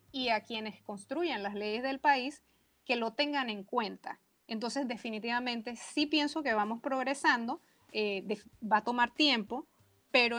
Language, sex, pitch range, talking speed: Spanish, female, 210-250 Hz, 155 wpm